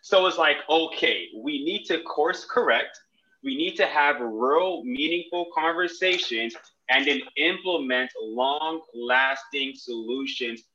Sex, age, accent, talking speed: male, 20-39, American, 115 wpm